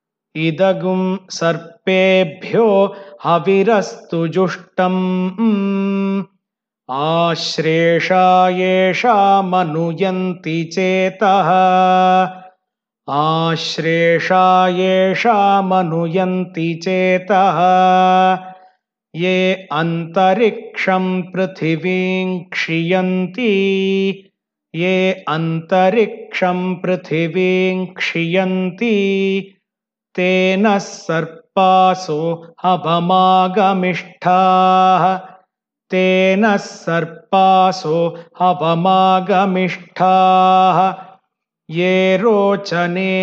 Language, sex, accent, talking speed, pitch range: Hindi, male, native, 30 wpm, 180-190 Hz